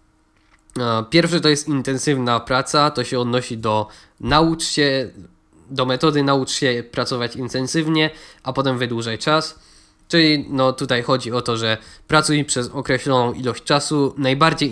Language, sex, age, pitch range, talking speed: Polish, male, 20-39, 120-150 Hz, 140 wpm